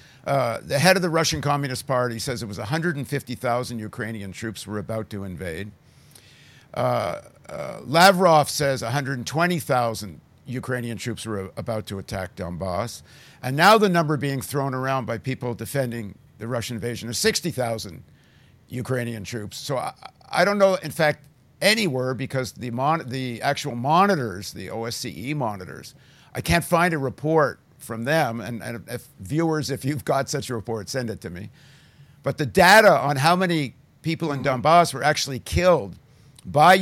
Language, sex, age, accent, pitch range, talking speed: English, male, 50-69, American, 115-155 Hz, 160 wpm